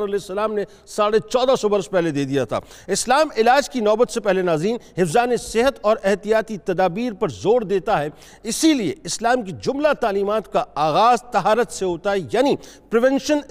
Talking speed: 175 wpm